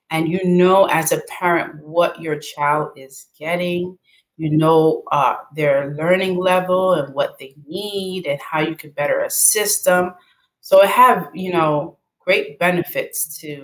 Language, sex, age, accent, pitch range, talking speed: English, female, 30-49, American, 160-210 Hz, 160 wpm